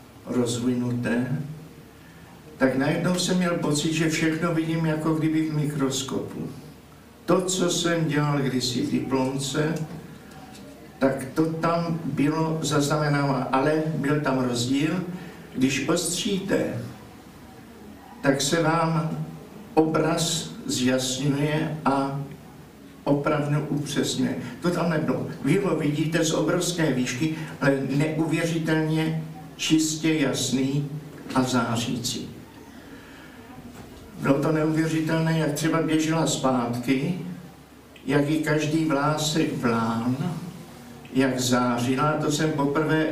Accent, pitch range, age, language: native, 135-160 Hz, 60-79, Czech